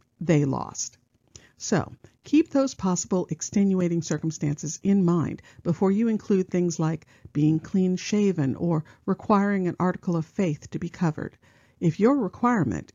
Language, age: English, 50-69